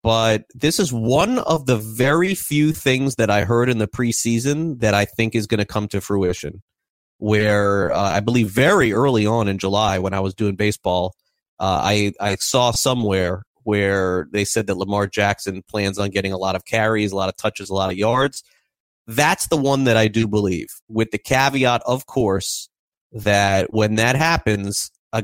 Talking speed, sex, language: 195 wpm, male, English